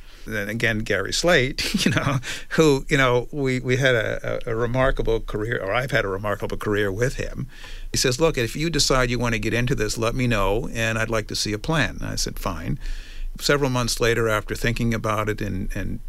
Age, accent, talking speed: 50-69, American, 225 wpm